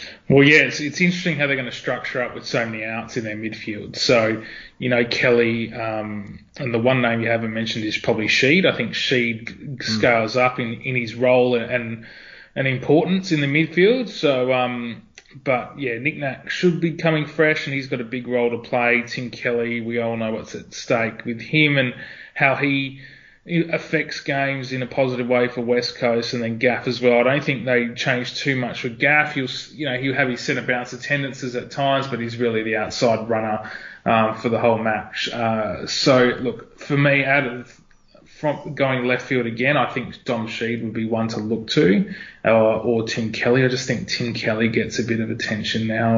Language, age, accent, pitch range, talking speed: English, 20-39, Australian, 115-135 Hz, 210 wpm